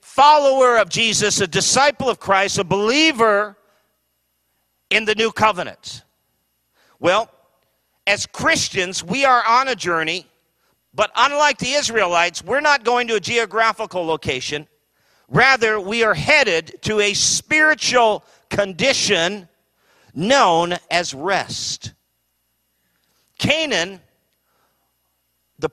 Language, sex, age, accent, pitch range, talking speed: English, male, 50-69, American, 155-215 Hz, 105 wpm